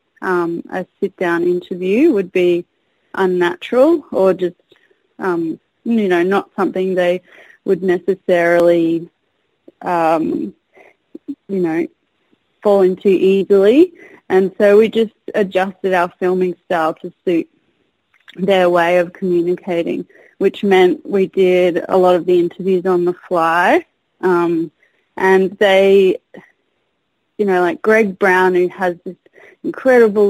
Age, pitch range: 20-39, 180-225 Hz